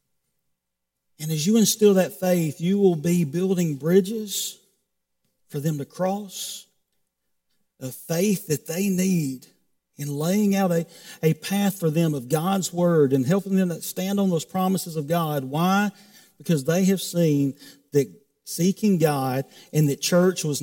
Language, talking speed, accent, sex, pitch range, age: English, 155 wpm, American, male, 140-180 Hz, 50-69